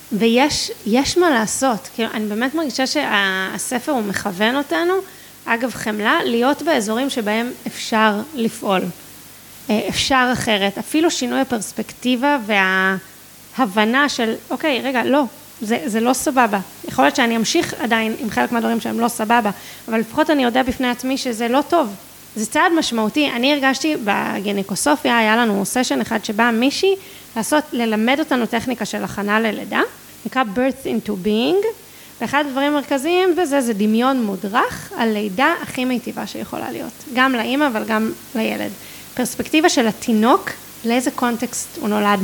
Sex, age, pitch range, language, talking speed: female, 20-39, 220-285 Hz, Hebrew, 145 wpm